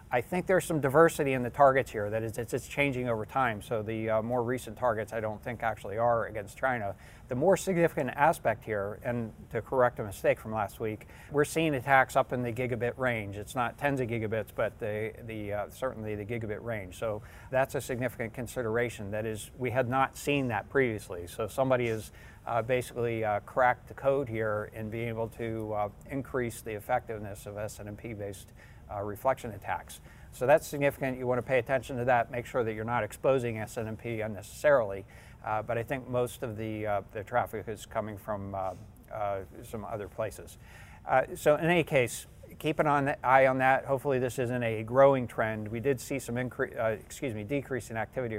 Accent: American